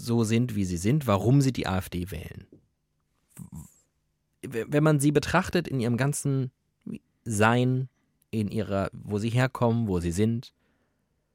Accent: German